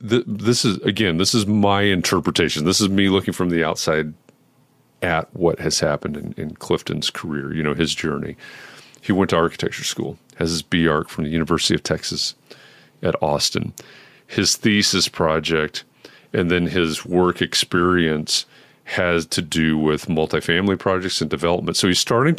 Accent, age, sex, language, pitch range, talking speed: American, 40-59, male, English, 80-110 Hz, 160 wpm